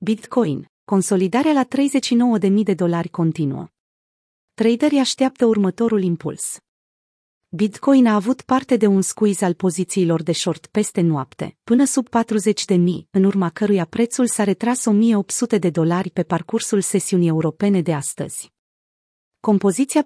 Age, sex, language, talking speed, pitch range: 30-49, female, Romanian, 130 wpm, 180-225 Hz